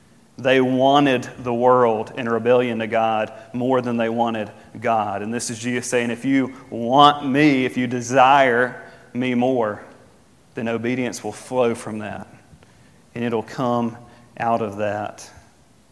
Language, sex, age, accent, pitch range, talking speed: English, male, 40-59, American, 115-130 Hz, 145 wpm